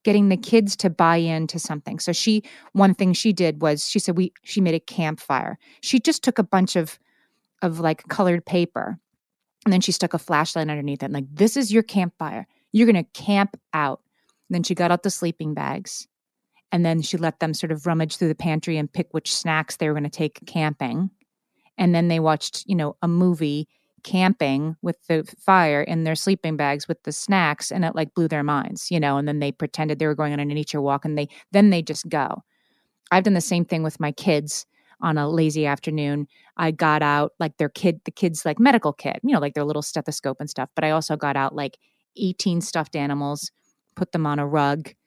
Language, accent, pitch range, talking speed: English, American, 150-185 Hz, 220 wpm